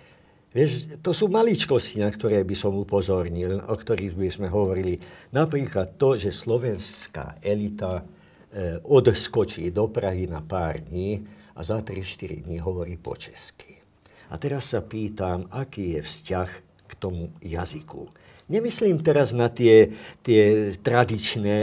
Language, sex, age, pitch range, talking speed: Slovak, male, 60-79, 90-115 Hz, 130 wpm